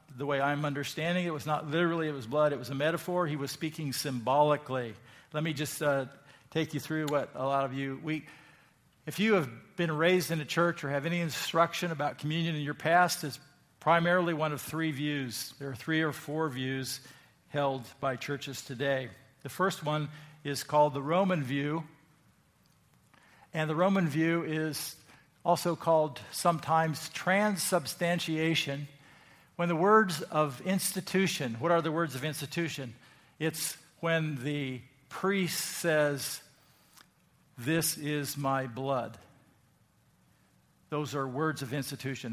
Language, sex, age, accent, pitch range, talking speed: English, male, 50-69, American, 140-170 Hz, 150 wpm